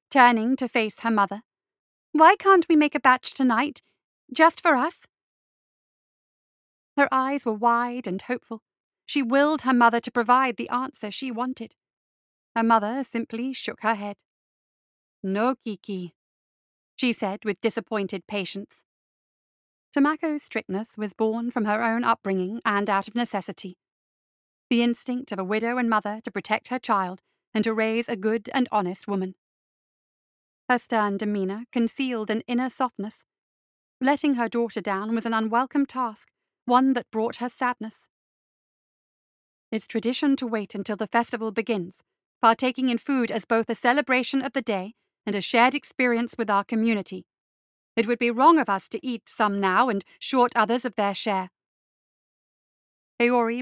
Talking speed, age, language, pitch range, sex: 155 wpm, 40-59, English, 210-255 Hz, female